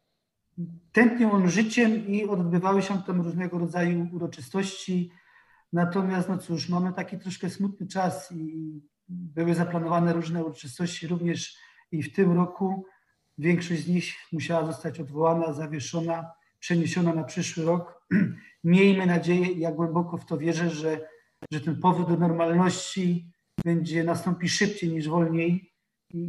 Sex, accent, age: male, native, 40-59